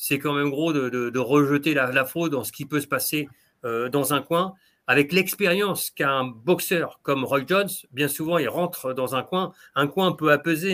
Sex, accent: male, French